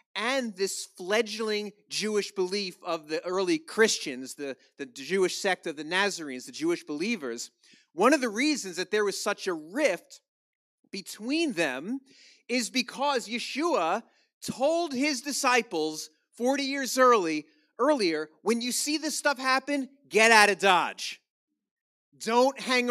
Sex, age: male, 30-49